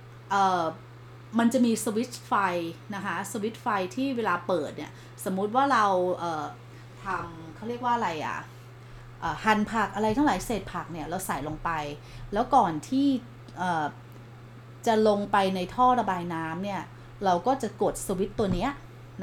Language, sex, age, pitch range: Thai, female, 20-39, 155-245 Hz